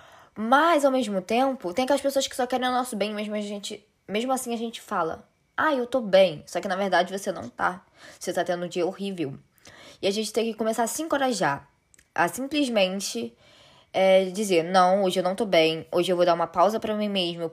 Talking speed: 220 wpm